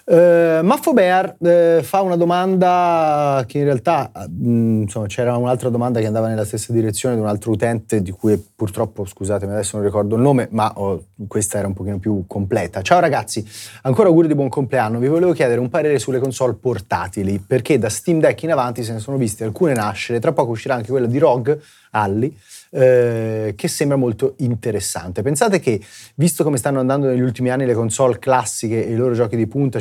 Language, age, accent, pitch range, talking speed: Italian, 30-49, native, 105-135 Hz, 195 wpm